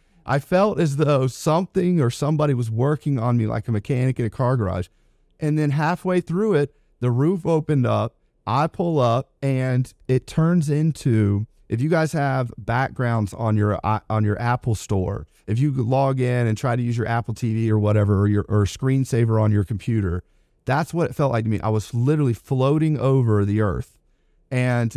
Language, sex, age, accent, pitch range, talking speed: English, male, 40-59, American, 110-145 Hz, 190 wpm